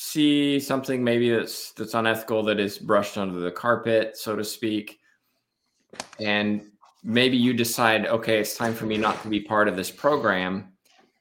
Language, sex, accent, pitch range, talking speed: English, male, American, 100-115 Hz, 165 wpm